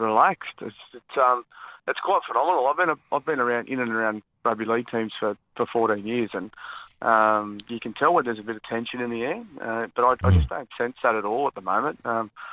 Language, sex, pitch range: English, male, 115-135 Hz